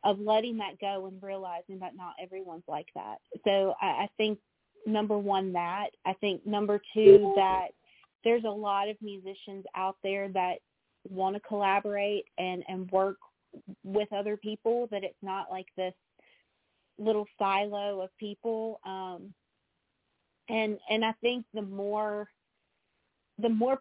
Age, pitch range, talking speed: 30-49, 190-215 Hz, 145 wpm